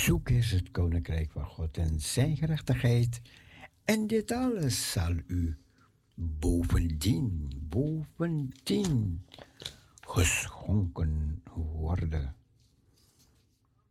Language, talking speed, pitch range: Dutch, 80 wpm, 85-125 Hz